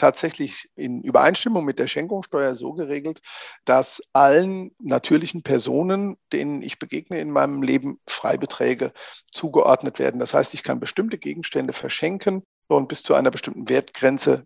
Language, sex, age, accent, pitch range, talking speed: German, male, 50-69, German, 135-195 Hz, 140 wpm